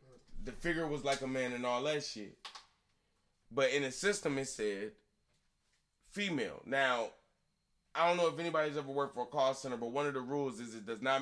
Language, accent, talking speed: English, American, 205 wpm